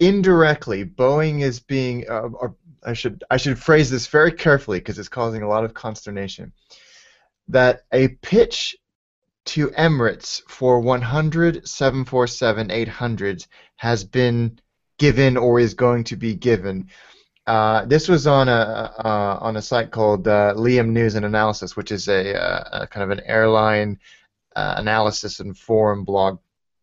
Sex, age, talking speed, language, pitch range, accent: male, 30-49, 145 wpm, English, 110-145 Hz, American